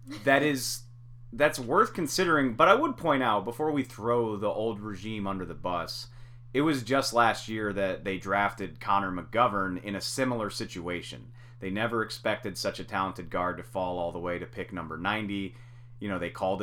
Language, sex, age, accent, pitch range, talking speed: English, male, 30-49, American, 100-125 Hz, 190 wpm